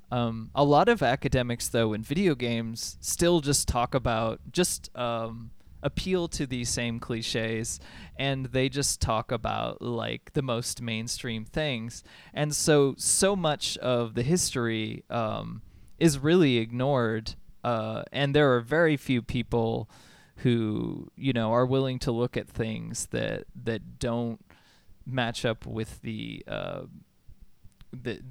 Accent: American